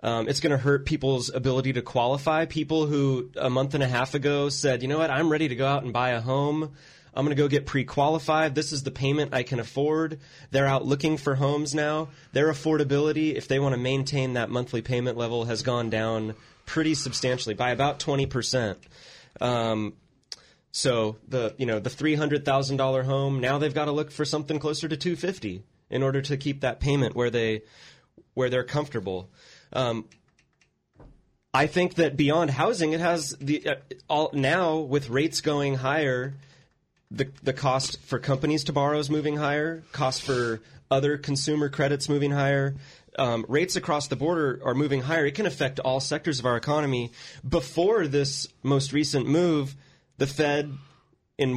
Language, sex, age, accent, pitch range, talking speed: English, male, 20-39, American, 130-150 Hz, 185 wpm